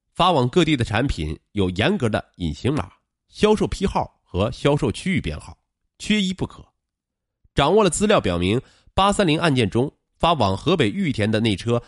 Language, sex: Chinese, male